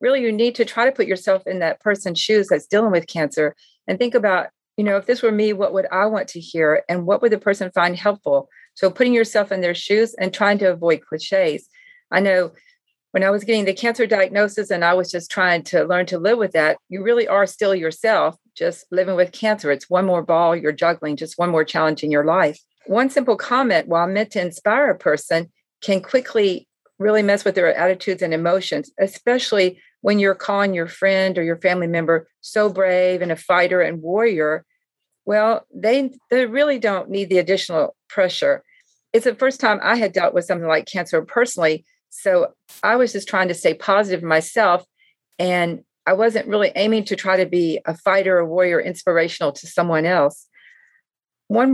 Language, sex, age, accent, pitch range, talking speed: English, female, 50-69, American, 175-220 Hz, 200 wpm